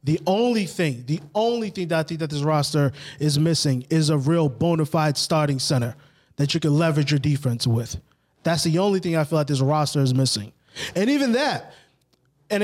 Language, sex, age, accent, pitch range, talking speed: English, male, 20-39, American, 145-180 Hz, 205 wpm